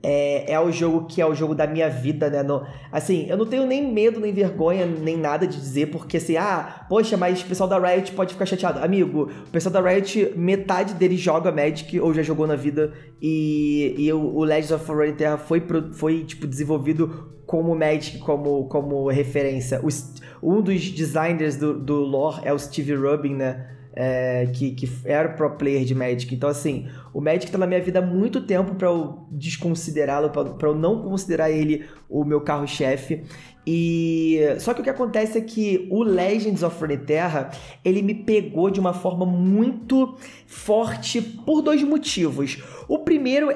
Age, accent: 20-39, Brazilian